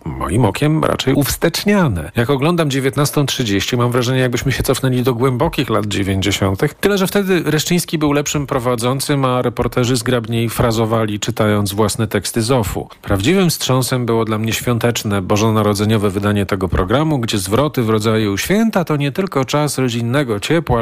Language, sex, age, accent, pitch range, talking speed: Polish, male, 40-59, native, 105-135 Hz, 150 wpm